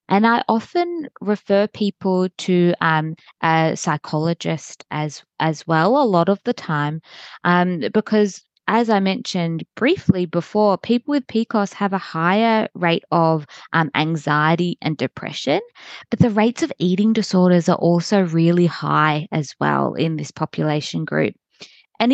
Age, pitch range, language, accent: 20-39, 165-215 Hz, English, Australian